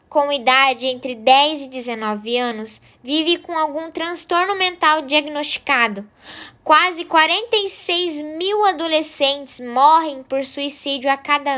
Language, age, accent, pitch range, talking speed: Portuguese, 10-29, Brazilian, 235-315 Hz, 115 wpm